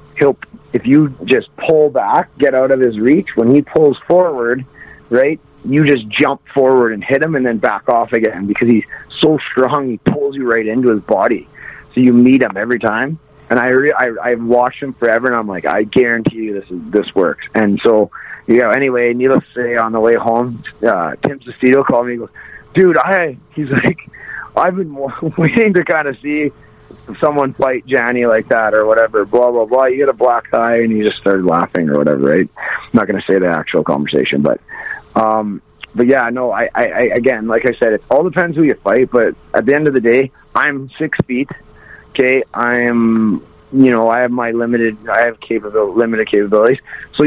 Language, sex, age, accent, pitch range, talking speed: English, male, 30-49, American, 115-140 Hz, 215 wpm